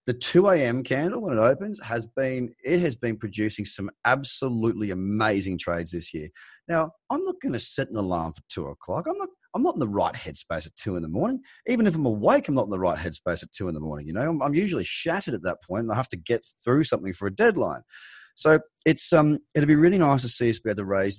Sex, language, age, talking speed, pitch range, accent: male, English, 30-49, 260 wpm, 100-135 Hz, Australian